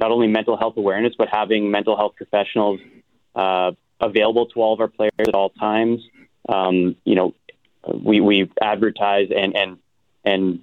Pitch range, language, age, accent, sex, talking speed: 100-115 Hz, English, 20-39, American, male, 165 wpm